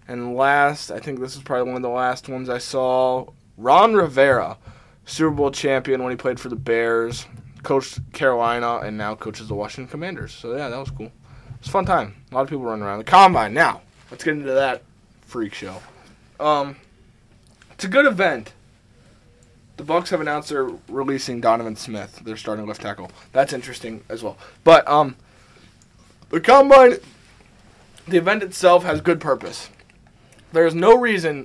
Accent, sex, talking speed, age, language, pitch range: American, male, 175 wpm, 20-39, English, 115-160 Hz